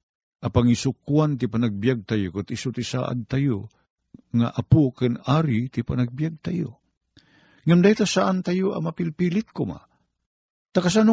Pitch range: 105-150 Hz